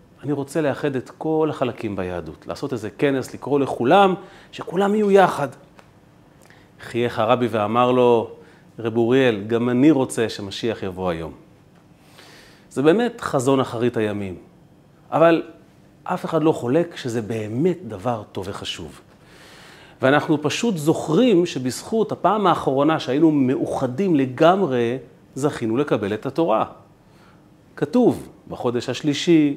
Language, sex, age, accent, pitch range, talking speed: Hebrew, male, 40-59, native, 115-170 Hz, 120 wpm